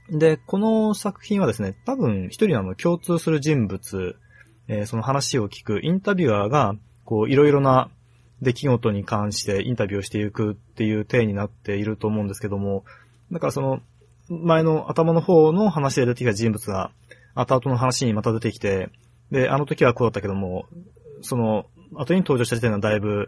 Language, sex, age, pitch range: Japanese, male, 20-39, 105-135 Hz